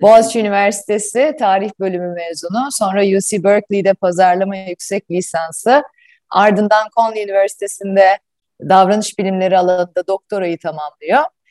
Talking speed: 100 wpm